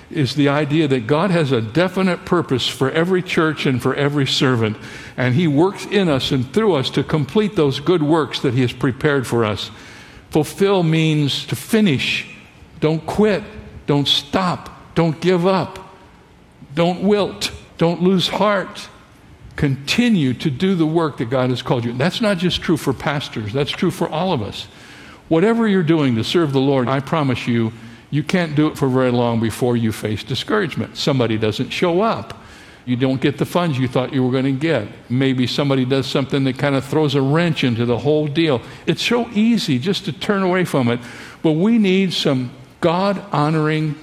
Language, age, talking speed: English, 60-79, 185 wpm